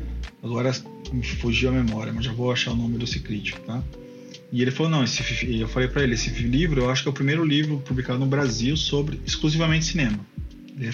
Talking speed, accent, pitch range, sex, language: 210 wpm, Brazilian, 120-140 Hz, male, Portuguese